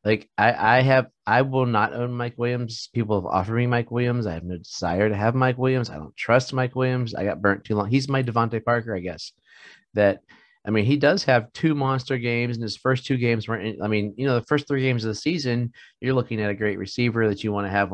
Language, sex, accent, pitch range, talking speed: English, male, American, 100-125 Hz, 260 wpm